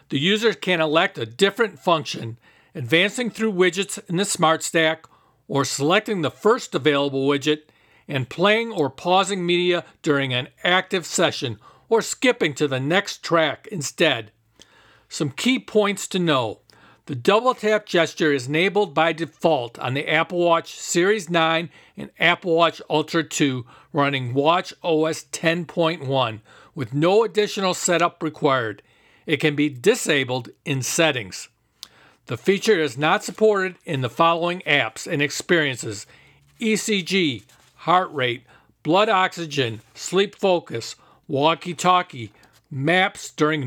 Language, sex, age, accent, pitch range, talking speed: English, male, 50-69, American, 140-185 Hz, 130 wpm